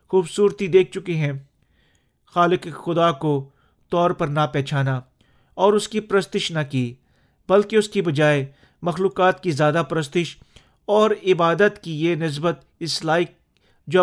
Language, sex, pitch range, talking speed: Urdu, male, 145-200 Hz, 140 wpm